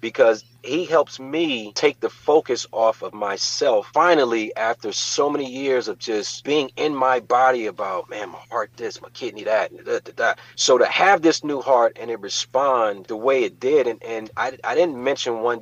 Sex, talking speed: male, 200 wpm